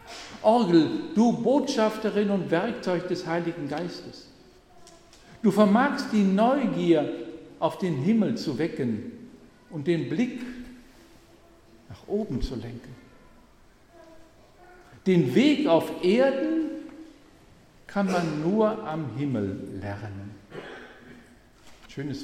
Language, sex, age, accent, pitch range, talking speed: German, male, 60-79, German, 145-235 Hz, 95 wpm